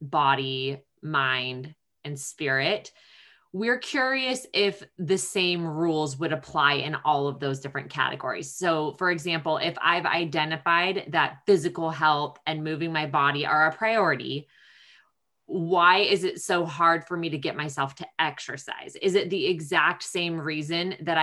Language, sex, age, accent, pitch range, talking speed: English, female, 20-39, American, 155-190 Hz, 150 wpm